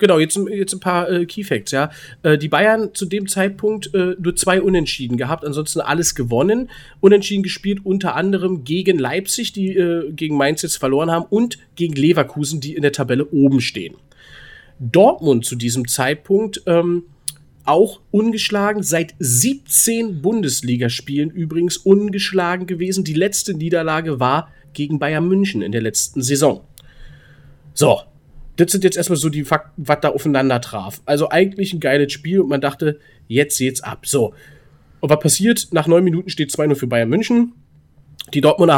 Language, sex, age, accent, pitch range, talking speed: German, male, 40-59, German, 130-180 Hz, 160 wpm